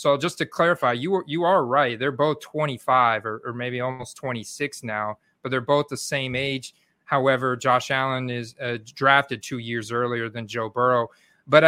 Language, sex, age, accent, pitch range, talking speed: English, male, 30-49, American, 130-170 Hz, 190 wpm